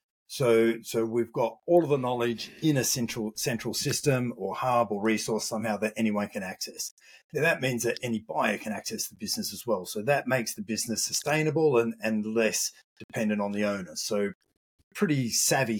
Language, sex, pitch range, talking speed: English, male, 110-155 Hz, 190 wpm